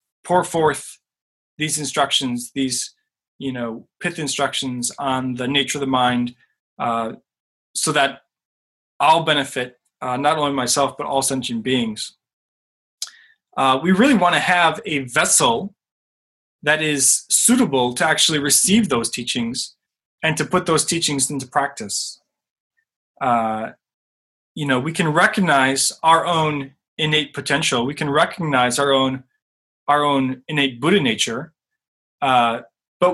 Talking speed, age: 130 wpm, 20-39